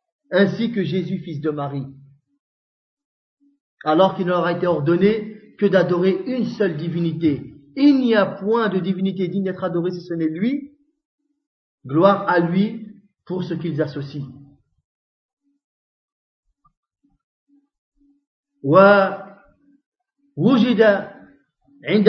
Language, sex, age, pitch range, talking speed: French, male, 40-59, 165-230 Hz, 100 wpm